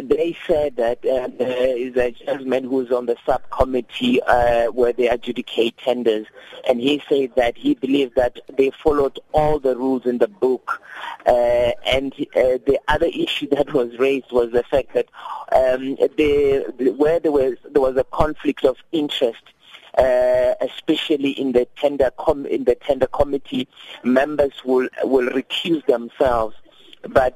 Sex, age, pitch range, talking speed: male, 50-69, 125-150 Hz, 160 wpm